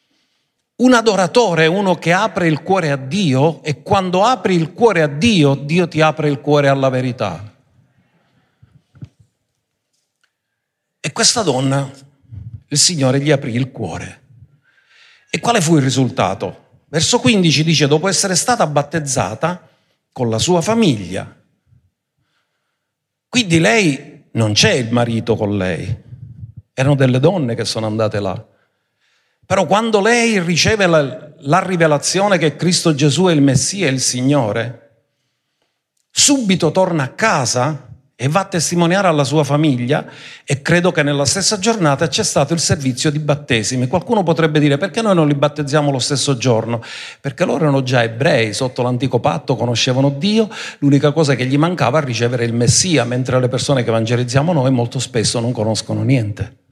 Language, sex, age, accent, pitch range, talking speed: Italian, male, 50-69, native, 125-170 Hz, 150 wpm